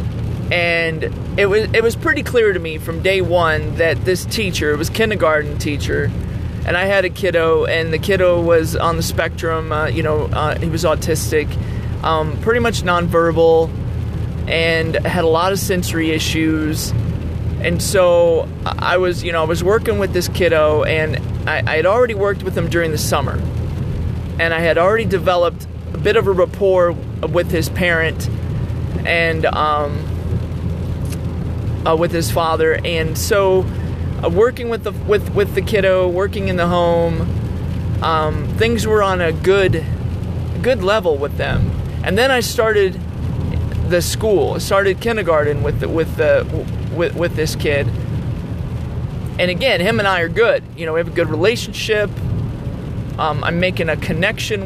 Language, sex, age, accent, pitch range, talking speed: English, male, 30-49, American, 110-175 Hz, 165 wpm